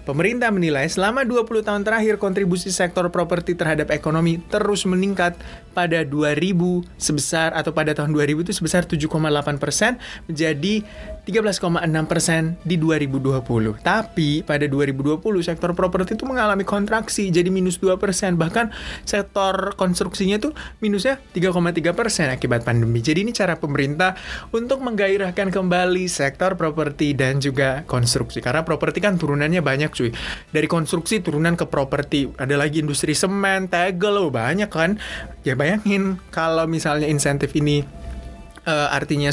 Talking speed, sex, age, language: 135 wpm, male, 20-39, Indonesian